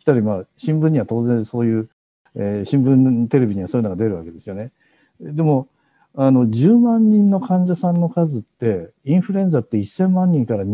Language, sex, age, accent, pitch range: Japanese, male, 50-69, native, 115-170 Hz